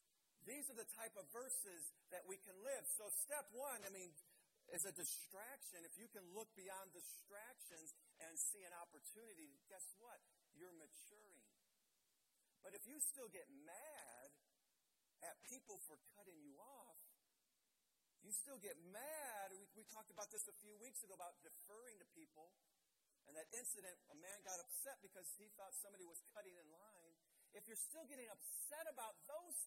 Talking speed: 170 wpm